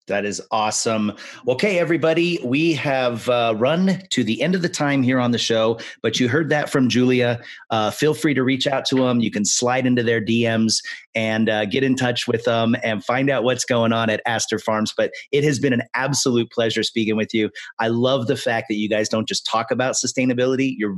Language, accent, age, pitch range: English, American, 30-49, 105-130 Hz